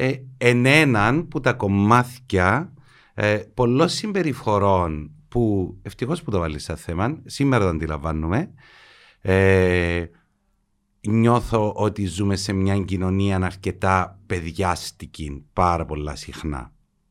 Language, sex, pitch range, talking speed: Greek, male, 90-110 Hz, 105 wpm